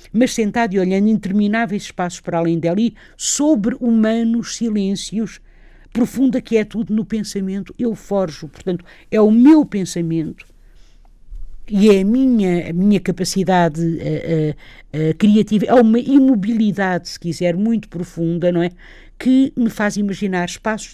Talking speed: 145 wpm